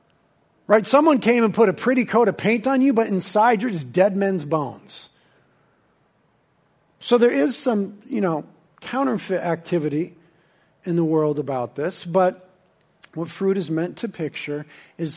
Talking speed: 160 wpm